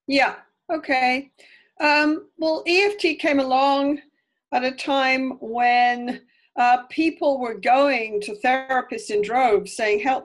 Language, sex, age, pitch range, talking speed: English, female, 50-69, 215-295 Hz, 125 wpm